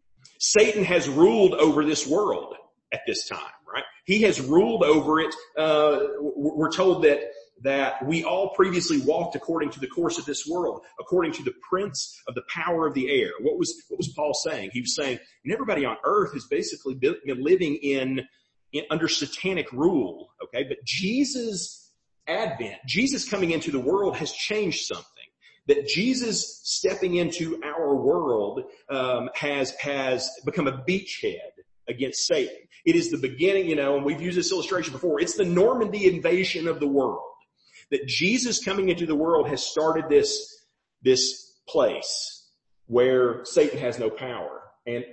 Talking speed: 165 wpm